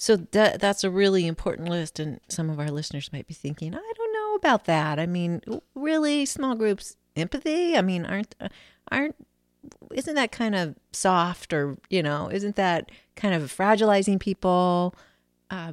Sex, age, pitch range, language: female, 40-59, 145-195 Hz, English